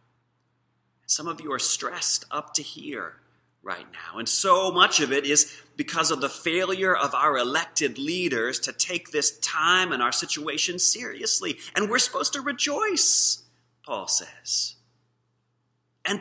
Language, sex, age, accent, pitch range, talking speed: English, male, 30-49, American, 145-220 Hz, 150 wpm